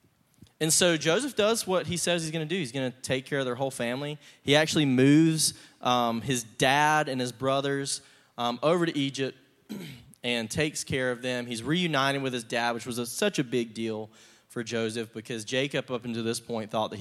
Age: 20-39